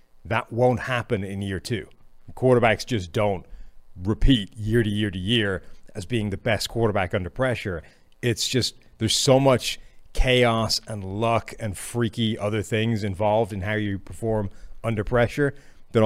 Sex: male